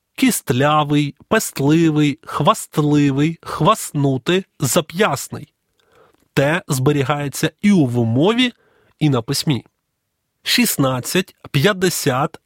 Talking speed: 70 wpm